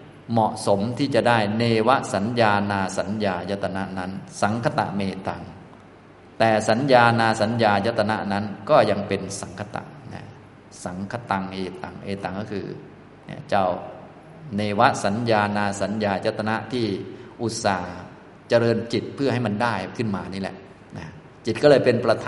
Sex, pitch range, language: male, 100-115 Hz, Thai